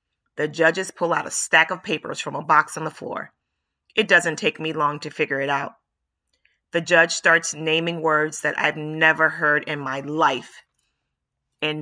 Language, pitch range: English, 140-175 Hz